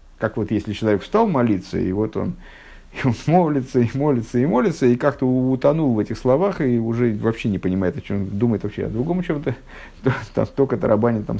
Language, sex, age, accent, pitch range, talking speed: Russian, male, 50-69, native, 100-140 Hz, 205 wpm